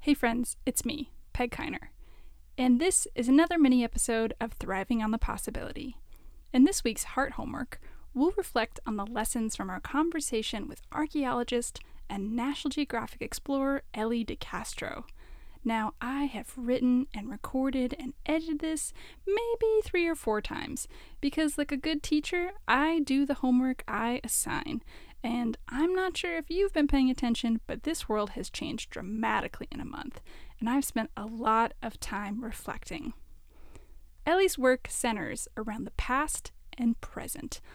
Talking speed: 155 wpm